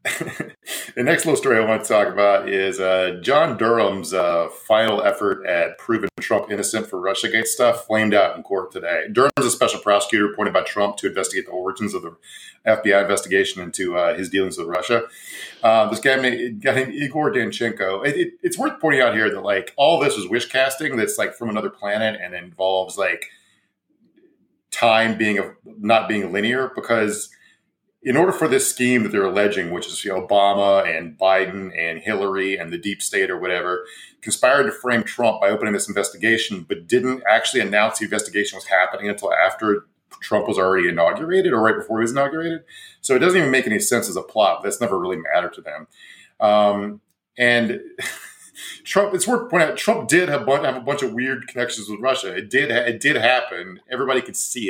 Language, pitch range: English, 100-130 Hz